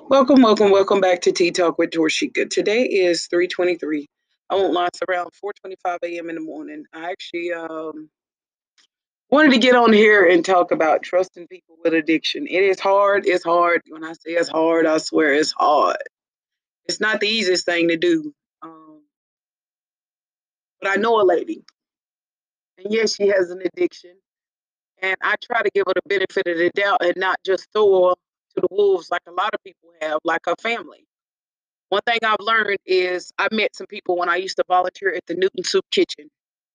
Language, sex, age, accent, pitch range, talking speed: English, female, 30-49, American, 175-240 Hz, 190 wpm